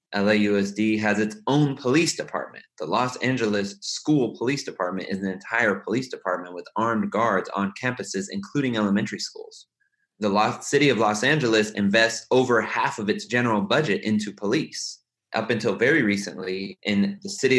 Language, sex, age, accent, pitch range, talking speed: English, male, 20-39, American, 100-145 Hz, 155 wpm